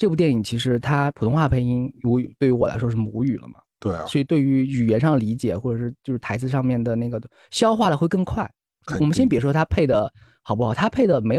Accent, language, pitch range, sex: native, Chinese, 125-180 Hz, male